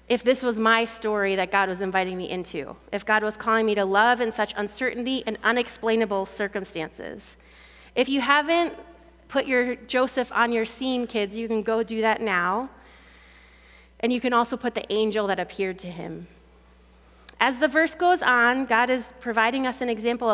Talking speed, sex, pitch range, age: 185 wpm, female, 205-255 Hz, 30-49